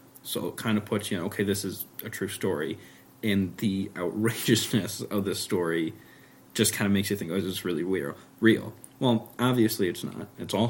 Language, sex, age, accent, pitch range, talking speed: English, male, 20-39, American, 95-115 Hz, 210 wpm